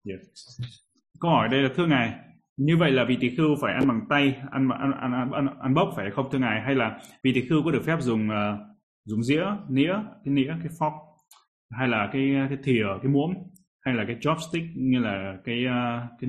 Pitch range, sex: 110-140 Hz, male